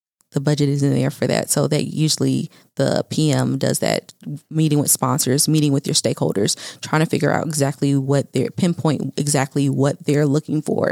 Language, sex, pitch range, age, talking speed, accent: English, female, 140-155 Hz, 30-49, 185 wpm, American